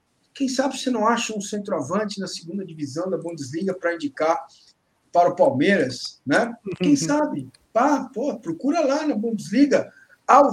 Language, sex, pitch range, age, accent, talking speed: Portuguese, male, 180-245 Hz, 50-69, Brazilian, 155 wpm